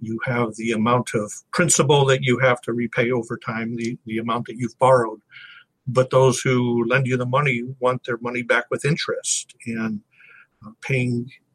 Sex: male